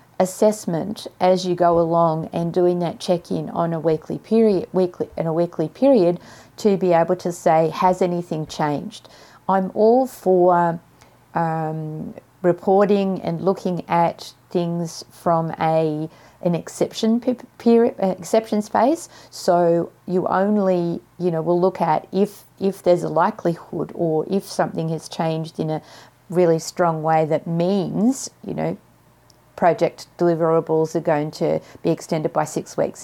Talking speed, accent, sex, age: 145 wpm, Australian, female, 40-59